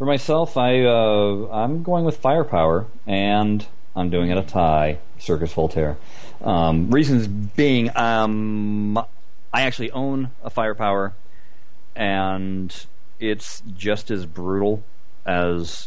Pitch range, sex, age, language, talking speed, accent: 95-125 Hz, male, 40-59, English, 120 wpm, American